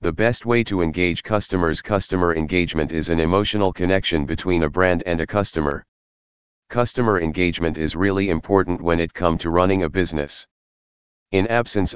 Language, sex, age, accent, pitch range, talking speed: English, male, 40-59, American, 80-95 Hz, 160 wpm